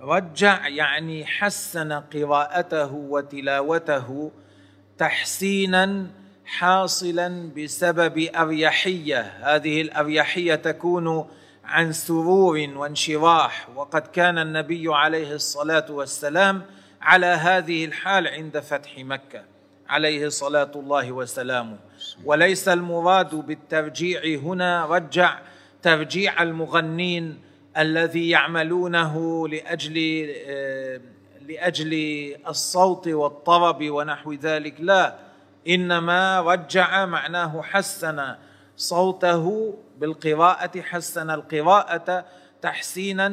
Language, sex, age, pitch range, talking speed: Arabic, male, 40-59, 150-175 Hz, 80 wpm